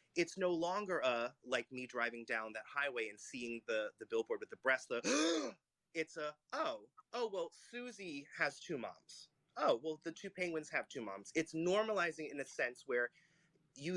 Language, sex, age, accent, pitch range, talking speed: English, male, 30-49, American, 130-180 Hz, 185 wpm